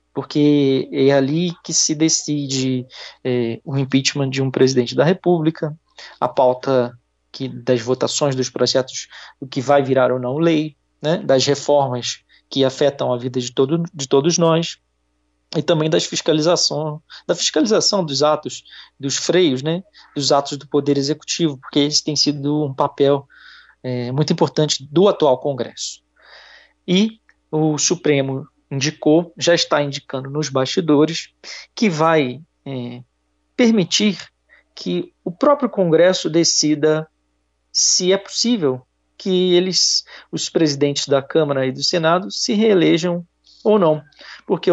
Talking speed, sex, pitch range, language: 130 wpm, male, 130-165 Hz, Portuguese